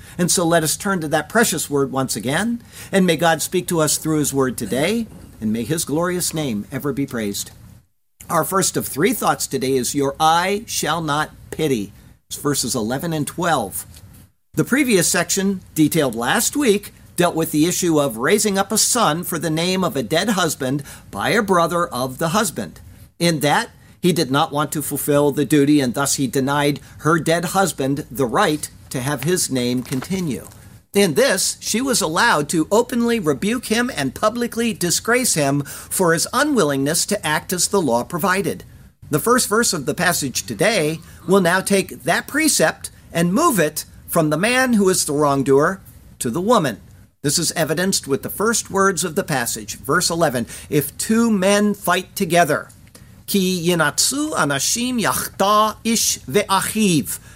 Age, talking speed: 50-69, 175 wpm